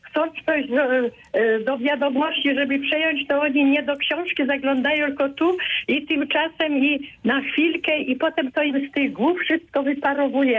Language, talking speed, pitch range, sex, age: Polish, 160 wpm, 240-290 Hz, female, 50-69